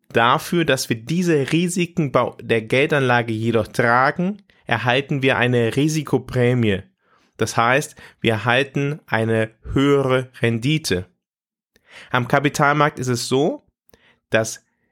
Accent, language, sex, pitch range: German, German, male, 115-145 Hz